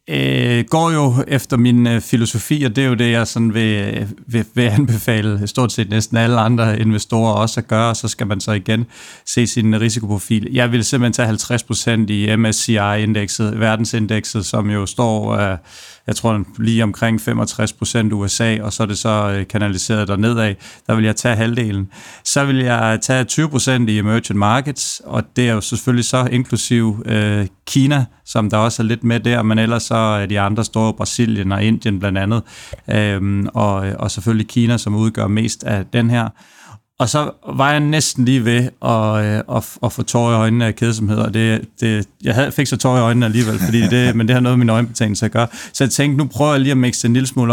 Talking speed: 205 wpm